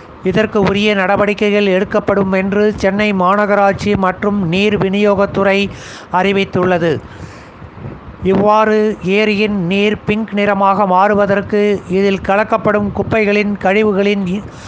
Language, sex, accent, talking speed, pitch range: Tamil, male, native, 85 wpm, 195-215 Hz